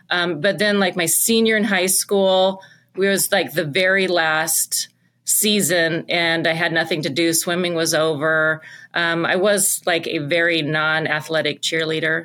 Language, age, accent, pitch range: English, 30-49, American, 155-185 Hz